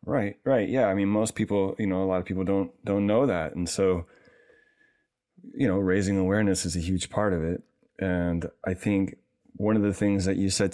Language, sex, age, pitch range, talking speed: English, male, 30-49, 90-100 Hz, 220 wpm